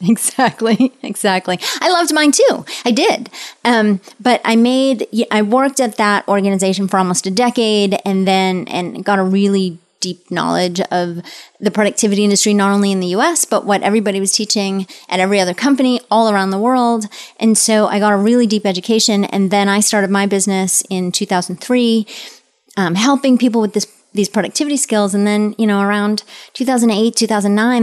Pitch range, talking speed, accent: 190-230 Hz, 175 wpm, American